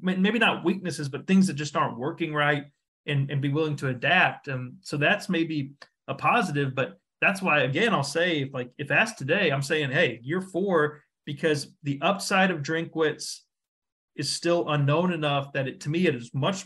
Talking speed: 190 wpm